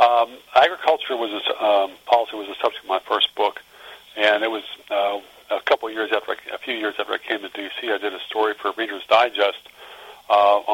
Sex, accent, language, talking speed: male, American, English, 210 wpm